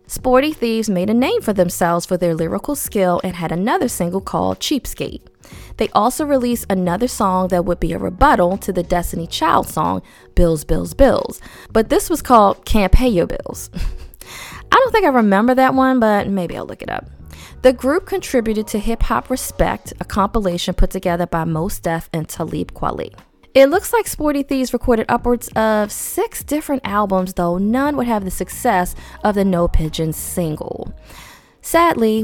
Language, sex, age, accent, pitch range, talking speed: English, female, 20-39, American, 175-245 Hz, 180 wpm